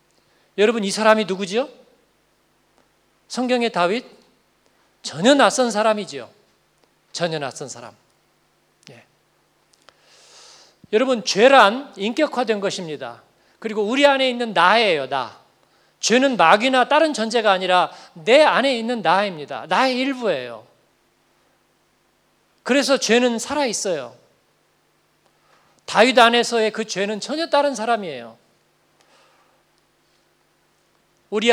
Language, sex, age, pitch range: Korean, male, 40-59, 185-240 Hz